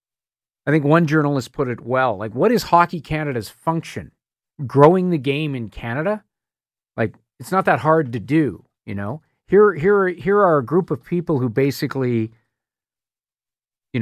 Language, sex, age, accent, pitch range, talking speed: English, male, 40-59, American, 120-160 Hz, 165 wpm